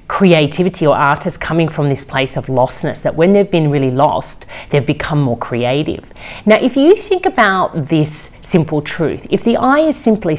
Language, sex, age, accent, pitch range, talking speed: English, female, 40-59, Australian, 130-175 Hz, 185 wpm